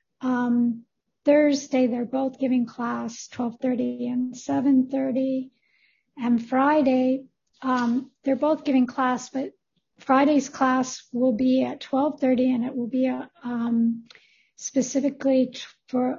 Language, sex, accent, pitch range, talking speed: English, female, American, 240-270 Hz, 115 wpm